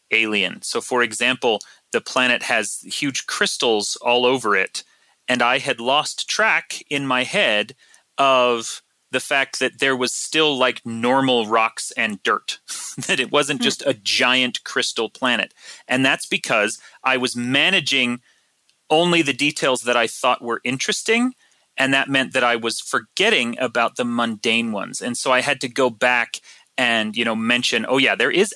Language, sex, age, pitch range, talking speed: English, male, 30-49, 115-140 Hz, 170 wpm